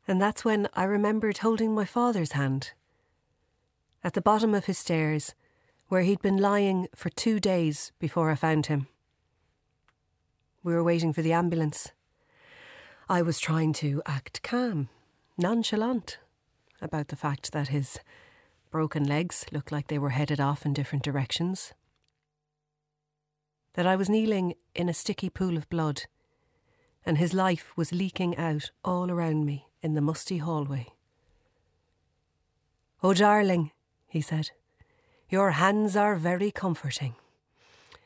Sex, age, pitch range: female, 40-59, 145-190 Hz